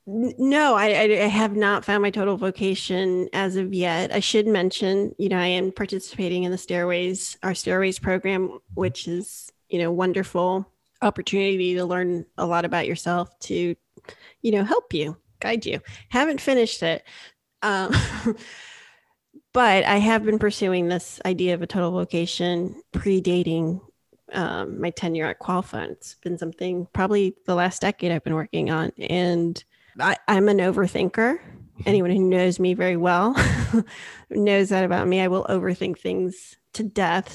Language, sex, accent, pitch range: English, female, American, 180-210 Hz